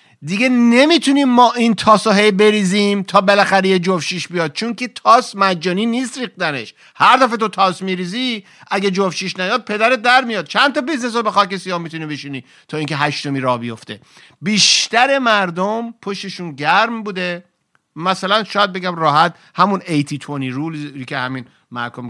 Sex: male